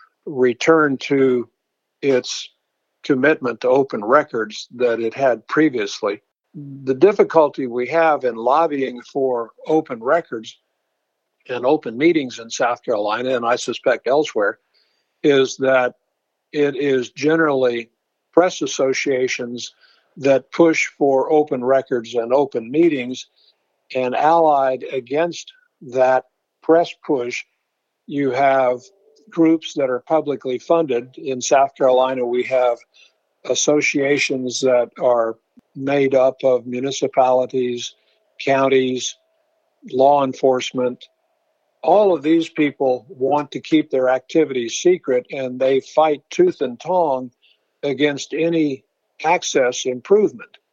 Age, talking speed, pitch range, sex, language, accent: 60-79, 110 wpm, 130-160 Hz, male, English, American